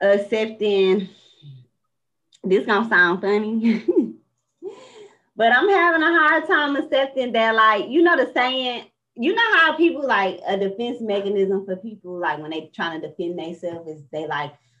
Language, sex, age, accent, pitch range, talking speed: English, female, 20-39, American, 155-220 Hz, 155 wpm